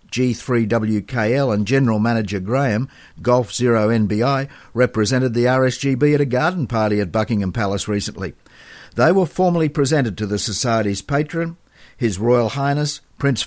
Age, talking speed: 60-79, 140 wpm